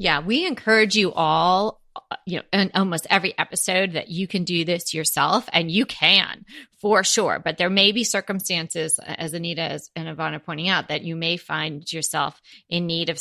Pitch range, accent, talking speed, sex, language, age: 170-210 Hz, American, 190 wpm, female, English, 30-49